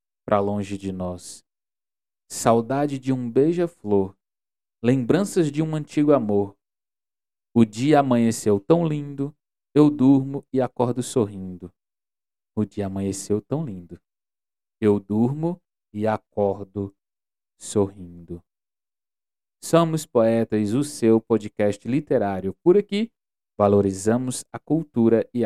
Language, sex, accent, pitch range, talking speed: Portuguese, male, Brazilian, 95-140 Hz, 105 wpm